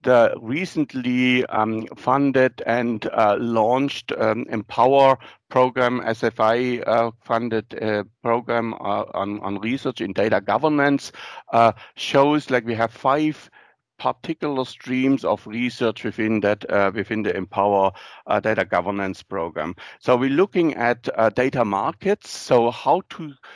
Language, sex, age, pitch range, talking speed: English, male, 60-79, 110-130 Hz, 130 wpm